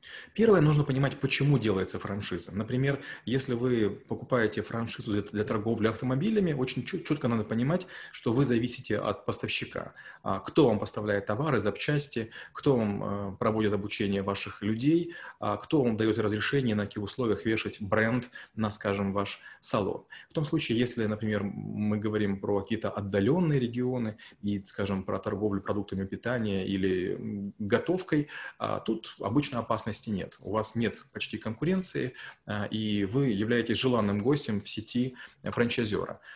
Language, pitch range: Russian, 105-135 Hz